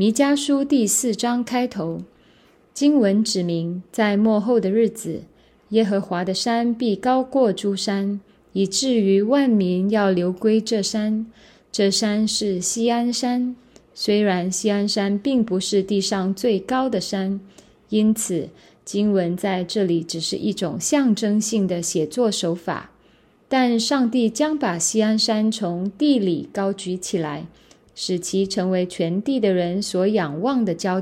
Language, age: Chinese, 20-39